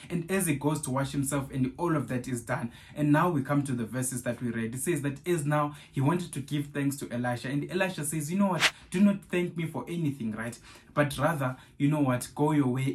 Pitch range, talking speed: 125-155 Hz, 260 wpm